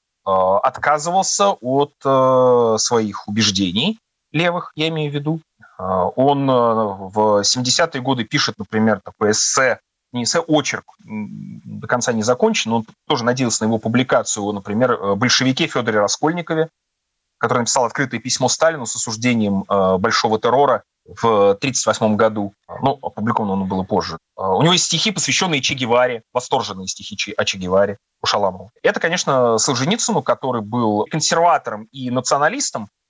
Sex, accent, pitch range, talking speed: male, native, 110-165 Hz, 130 wpm